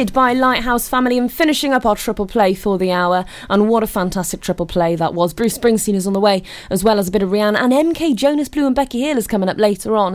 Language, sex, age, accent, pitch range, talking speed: English, female, 20-39, British, 190-255 Hz, 265 wpm